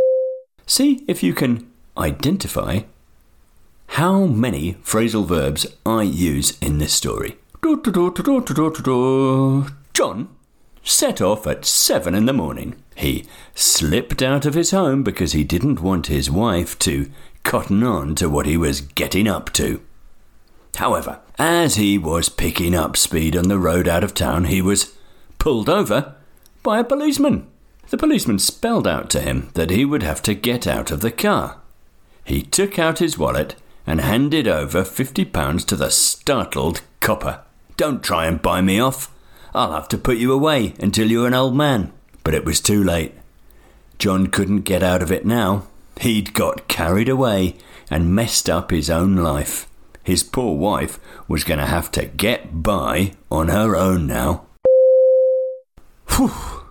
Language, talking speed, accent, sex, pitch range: English, 155 wpm, British, male, 85-140 Hz